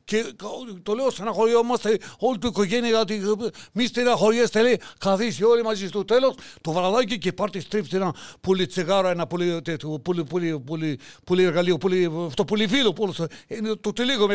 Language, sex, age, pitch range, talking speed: Greek, male, 60-79, 195-245 Hz, 130 wpm